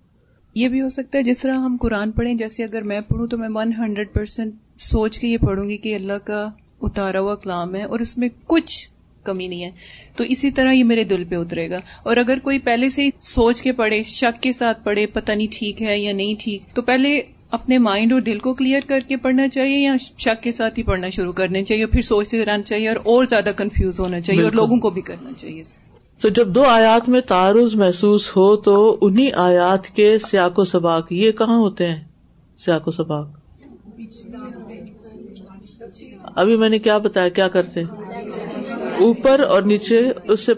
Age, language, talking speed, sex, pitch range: 30-49, Urdu, 205 wpm, female, 190-235 Hz